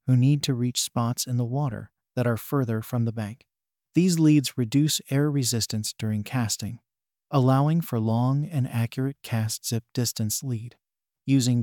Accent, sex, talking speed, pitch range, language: American, male, 160 wpm, 115-145 Hz, English